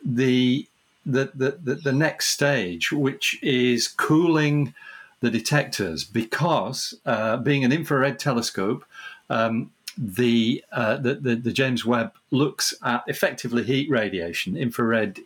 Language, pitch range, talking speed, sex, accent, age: English, 110-140 Hz, 120 wpm, male, British, 50-69